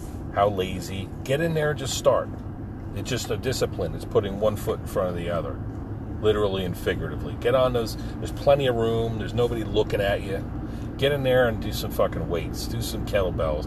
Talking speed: 205 wpm